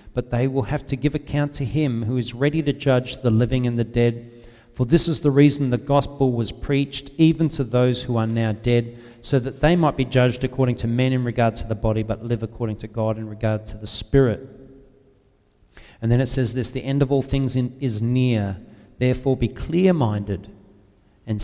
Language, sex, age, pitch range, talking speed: English, male, 40-59, 115-145 Hz, 210 wpm